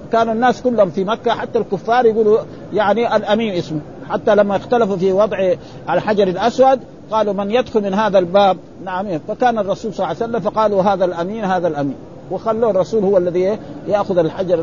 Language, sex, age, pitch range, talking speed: Arabic, male, 50-69, 175-215 Hz, 170 wpm